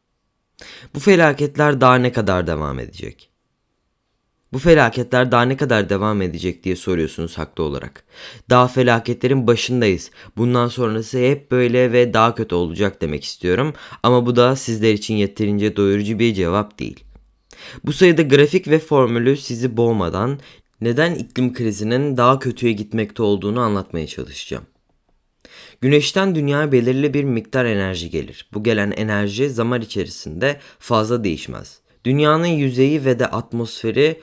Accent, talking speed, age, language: native, 135 wpm, 20-39, Turkish